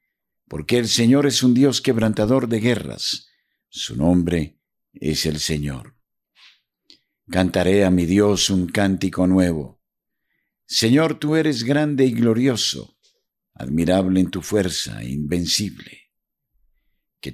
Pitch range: 80-115 Hz